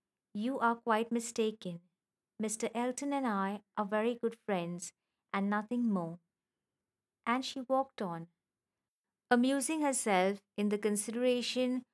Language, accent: English, Indian